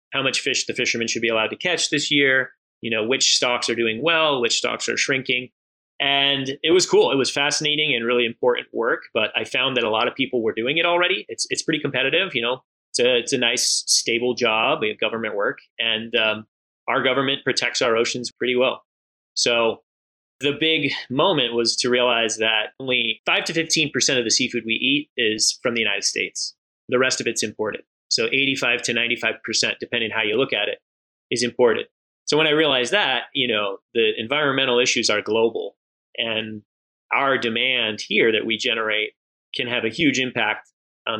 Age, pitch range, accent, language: 30-49, 115-145 Hz, American, English